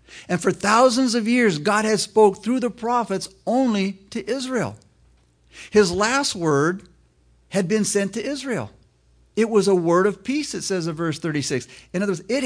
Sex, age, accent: male, 50-69, American